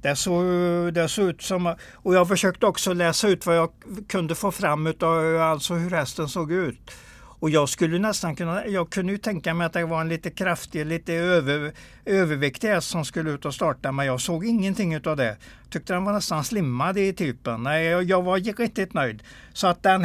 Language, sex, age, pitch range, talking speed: Swedish, male, 60-79, 140-180 Hz, 205 wpm